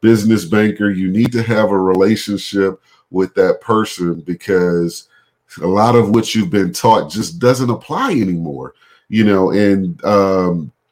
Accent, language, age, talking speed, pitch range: American, English, 40-59, 150 wpm, 100-120 Hz